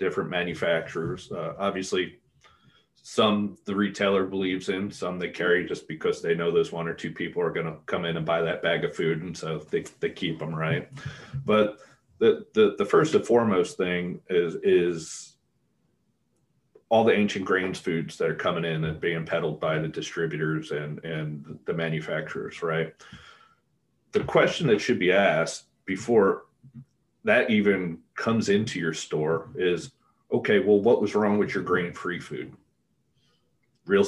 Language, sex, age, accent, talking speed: English, male, 30-49, American, 165 wpm